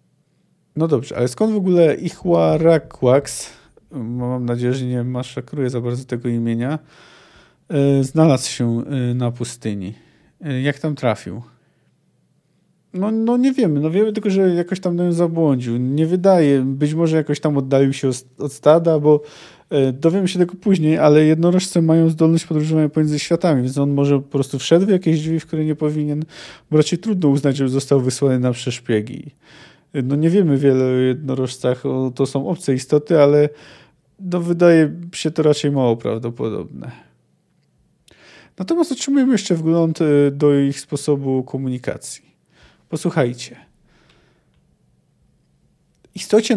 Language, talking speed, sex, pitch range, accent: Polish, 145 wpm, male, 130-165 Hz, native